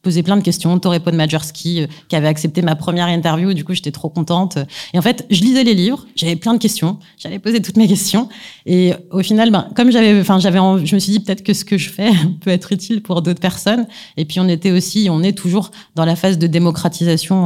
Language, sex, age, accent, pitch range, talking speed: French, female, 30-49, French, 165-200 Hz, 250 wpm